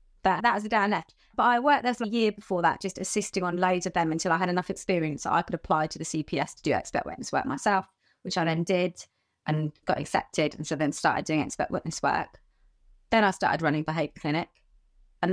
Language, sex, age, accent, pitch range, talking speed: English, female, 20-39, British, 165-205 Hz, 240 wpm